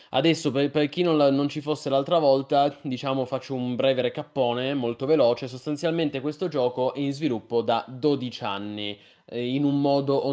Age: 20-39